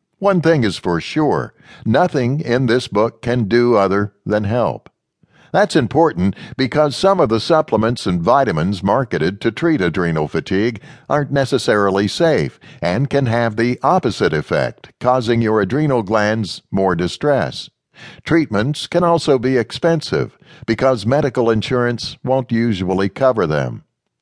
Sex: male